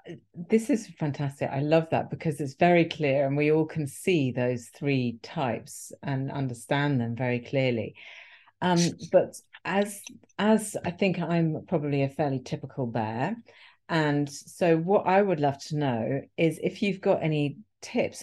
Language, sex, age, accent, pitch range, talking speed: English, female, 40-59, British, 130-170 Hz, 160 wpm